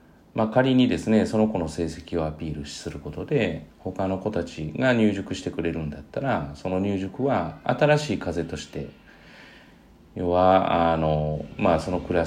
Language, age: Japanese, 40-59